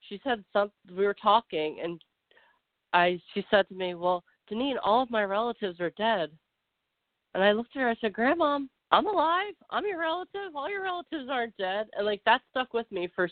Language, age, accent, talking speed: English, 30-49, American, 205 wpm